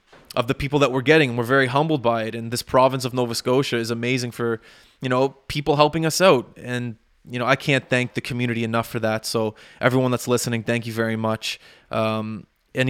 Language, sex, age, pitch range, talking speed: English, male, 20-39, 115-130 Hz, 225 wpm